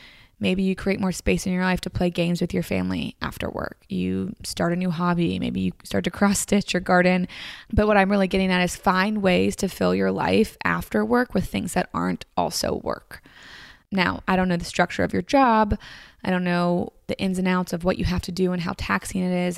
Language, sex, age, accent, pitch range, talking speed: English, female, 20-39, American, 170-195 Hz, 235 wpm